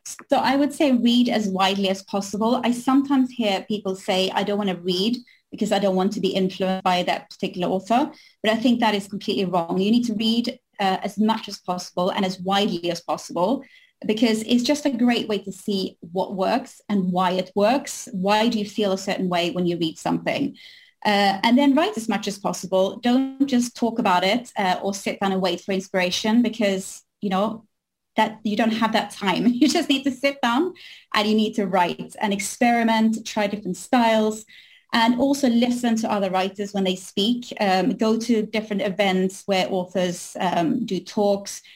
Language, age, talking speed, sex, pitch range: English, 30-49, 205 wpm, female, 190-235 Hz